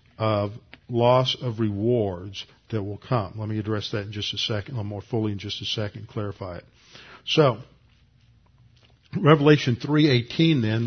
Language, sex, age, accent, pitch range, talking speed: English, male, 50-69, American, 110-130 Hz, 155 wpm